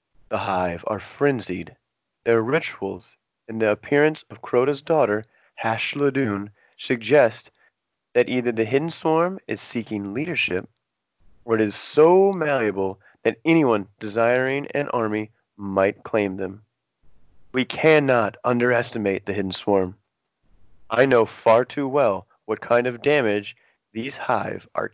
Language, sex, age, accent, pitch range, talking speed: English, male, 30-49, American, 100-125 Hz, 130 wpm